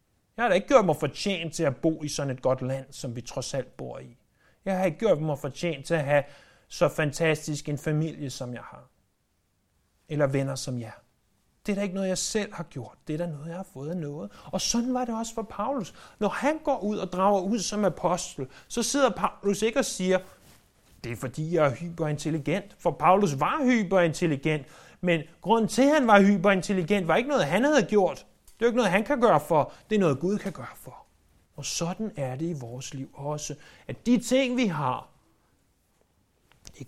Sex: male